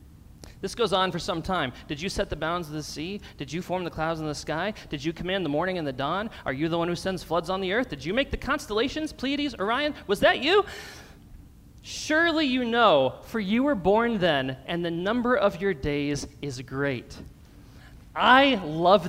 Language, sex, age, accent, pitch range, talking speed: English, male, 30-49, American, 155-245 Hz, 215 wpm